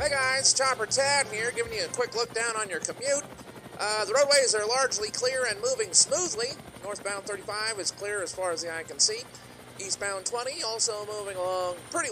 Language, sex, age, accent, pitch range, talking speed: English, male, 30-49, American, 180-280 Hz, 200 wpm